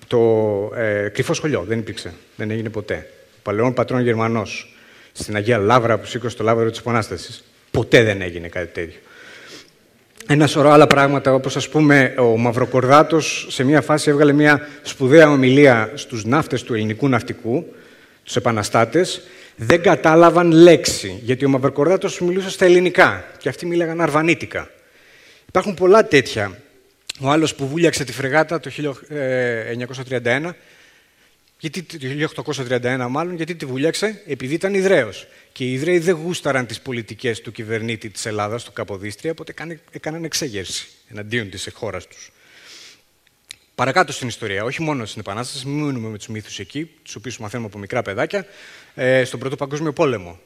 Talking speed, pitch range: 145 wpm, 115-155 Hz